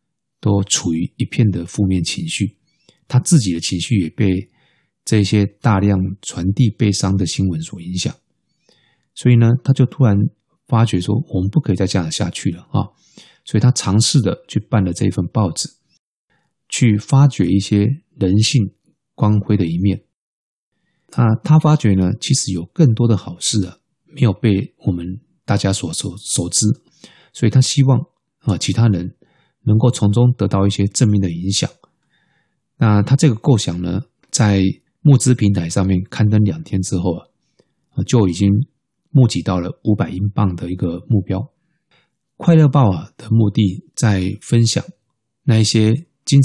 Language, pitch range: Chinese, 95-130 Hz